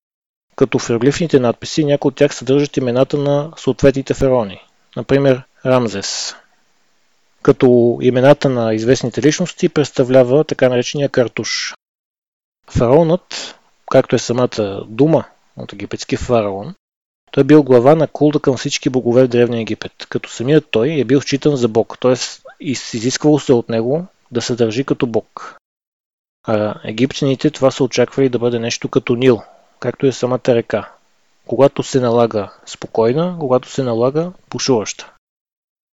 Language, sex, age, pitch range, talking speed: Bulgarian, male, 20-39, 120-140 Hz, 135 wpm